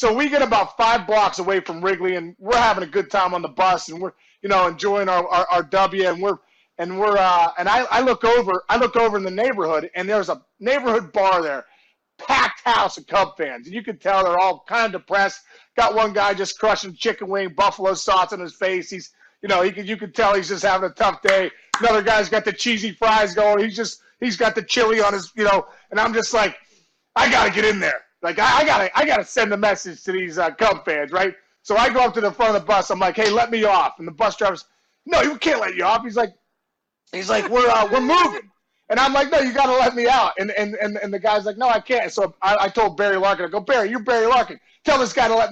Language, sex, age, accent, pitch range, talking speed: English, male, 30-49, American, 190-230 Hz, 265 wpm